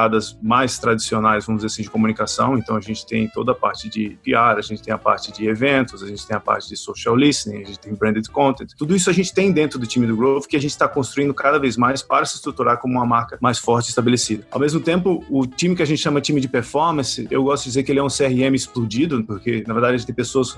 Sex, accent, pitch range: male, Brazilian, 115-140 Hz